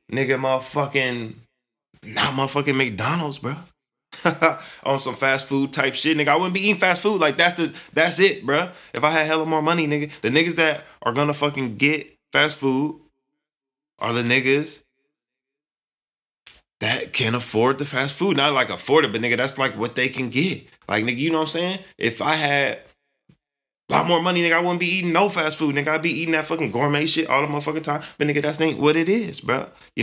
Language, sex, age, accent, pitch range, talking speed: English, male, 20-39, American, 135-160 Hz, 210 wpm